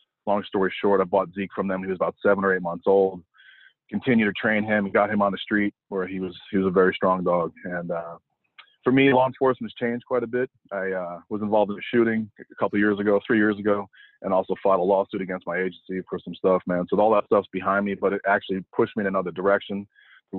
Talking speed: 255 wpm